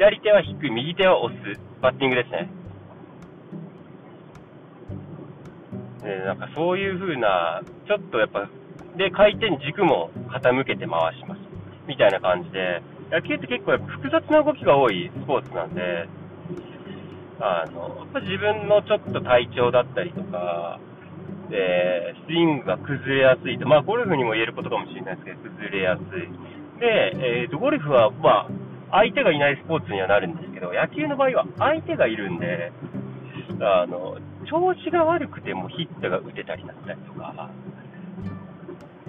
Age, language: 40-59, Japanese